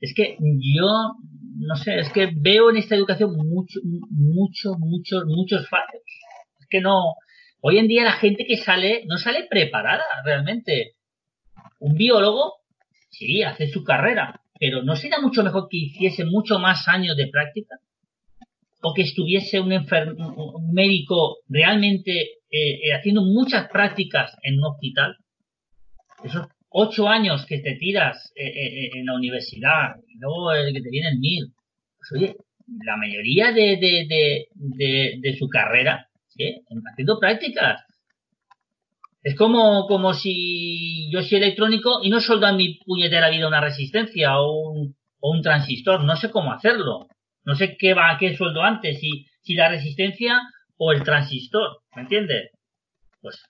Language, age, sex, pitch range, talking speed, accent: Spanish, 40-59, male, 150-205 Hz, 160 wpm, Spanish